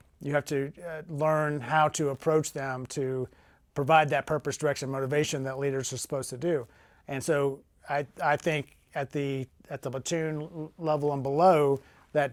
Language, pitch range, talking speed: English, 130-155 Hz, 170 wpm